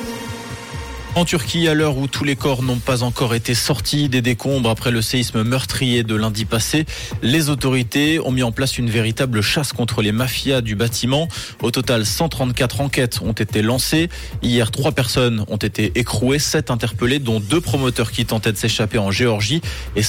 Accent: French